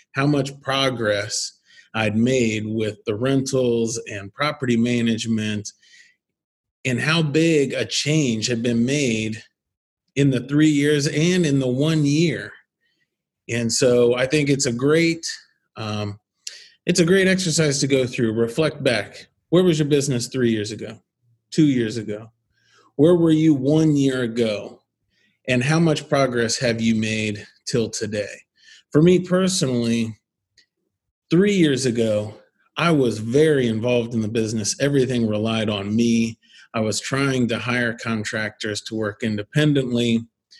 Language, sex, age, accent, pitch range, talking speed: English, male, 30-49, American, 110-145 Hz, 140 wpm